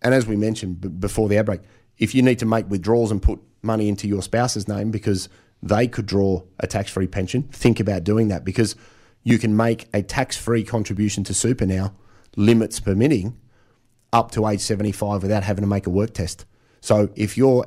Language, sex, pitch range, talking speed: English, male, 100-115 Hz, 195 wpm